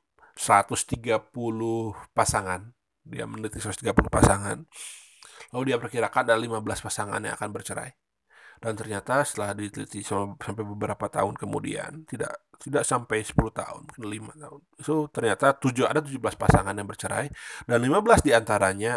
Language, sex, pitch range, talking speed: Indonesian, male, 105-125 Hz, 135 wpm